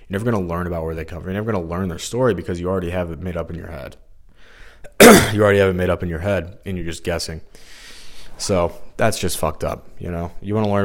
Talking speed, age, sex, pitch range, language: 280 wpm, 20-39, male, 85-95 Hz, English